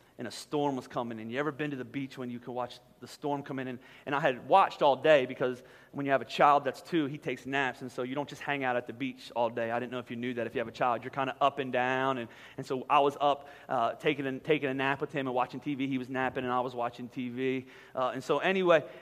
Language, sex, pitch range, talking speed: English, male, 135-210 Hz, 305 wpm